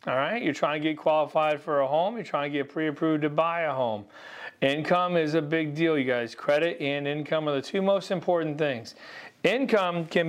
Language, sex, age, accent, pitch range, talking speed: English, male, 40-59, American, 135-180 Hz, 215 wpm